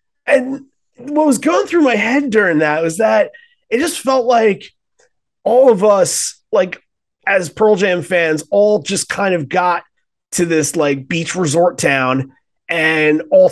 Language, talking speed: English, 160 wpm